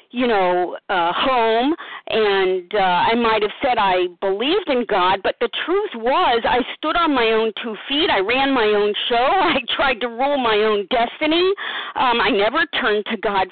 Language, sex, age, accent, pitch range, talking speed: English, female, 50-69, American, 220-295 Hz, 190 wpm